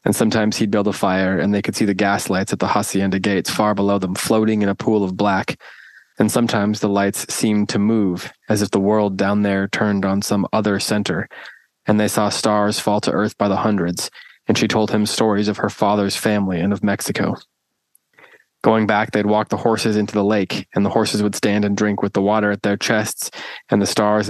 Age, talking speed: 20-39, 225 wpm